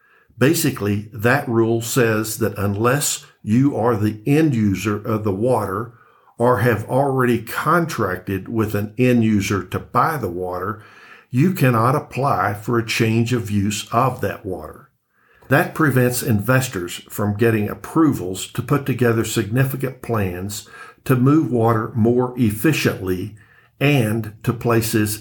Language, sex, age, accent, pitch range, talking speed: English, male, 60-79, American, 105-130 Hz, 135 wpm